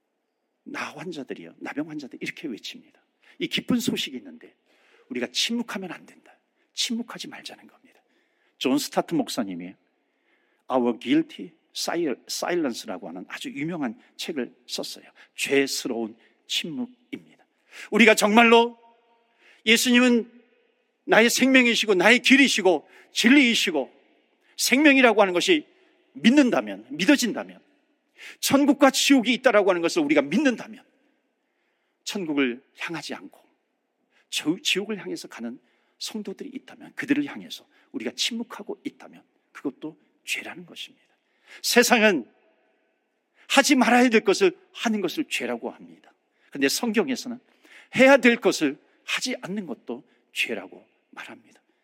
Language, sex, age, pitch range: Korean, male, 50-69, 215-290 Hz